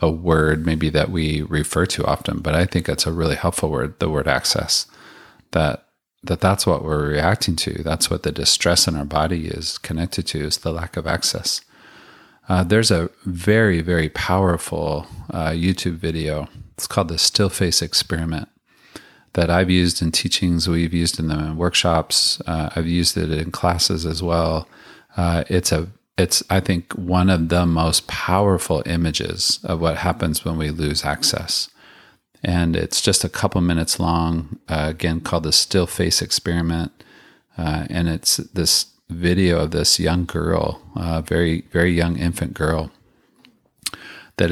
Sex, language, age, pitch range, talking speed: male, English, 30-49, 80-90 Hz, 165 wpm